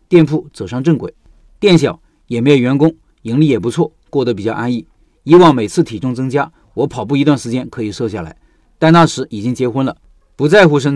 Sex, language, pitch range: male, Chinese, 120-165 Hz